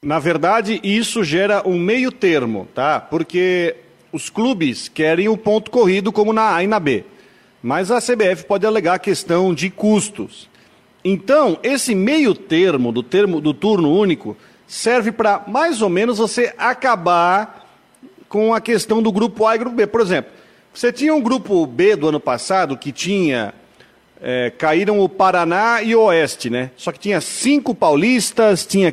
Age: 40-59